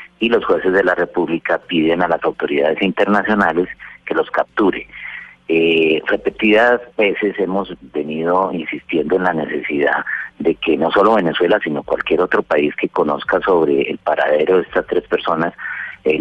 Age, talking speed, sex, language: 40-59, 155 wpm, male, Spanish